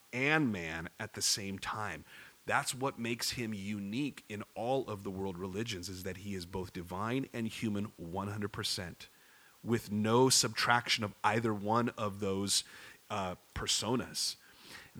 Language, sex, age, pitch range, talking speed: English, male, 40-59, 105-155 Hz, 150 wpm